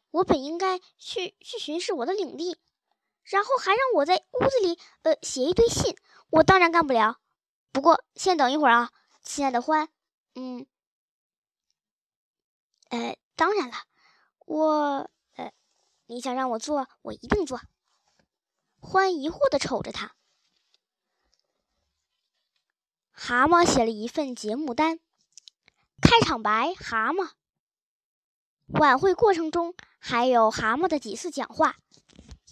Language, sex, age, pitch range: Chinese, male, 10-29, 250-360 Hz